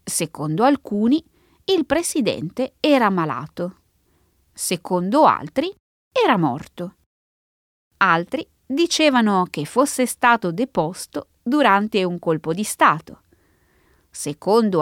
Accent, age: native, 20-39